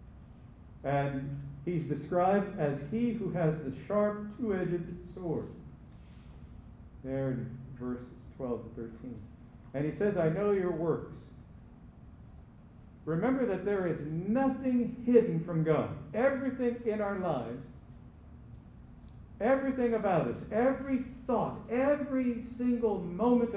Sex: male